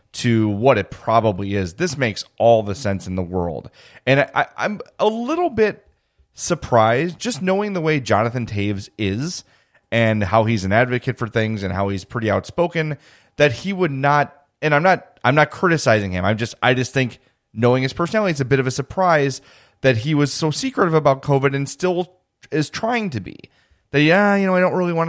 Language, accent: English, American